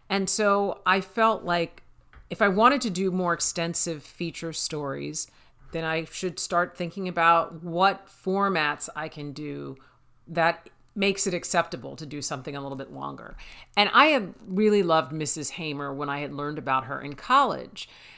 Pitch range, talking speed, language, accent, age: 150-185 Hz, 170 wpm, English, American, 50-69